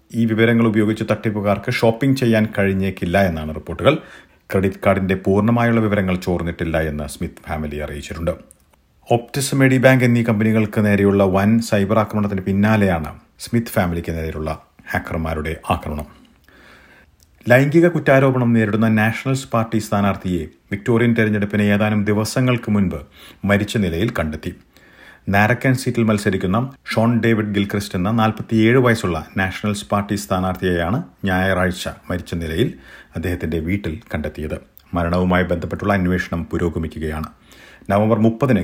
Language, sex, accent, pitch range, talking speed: Malayalam, male, native, 85-115 Hz, 110 wpm